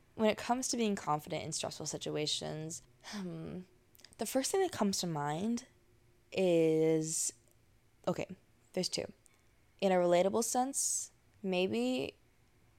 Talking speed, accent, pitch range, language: 120 wpm, American, 125-185 Hz, English